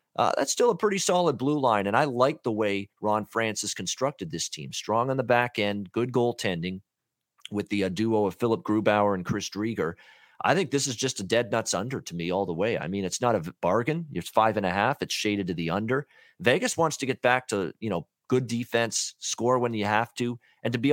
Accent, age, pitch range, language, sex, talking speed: American, 40-59, 100-120 Hz, English, male, 240 wpm